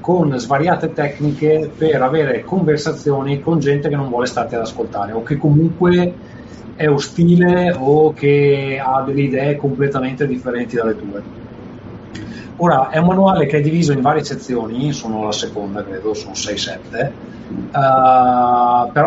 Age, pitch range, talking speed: 30-49, 115-150 Hz, 145 wpm